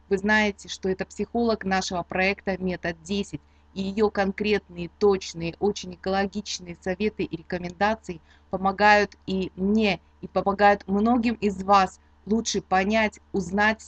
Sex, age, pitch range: female, 20-39, 180-215 Hz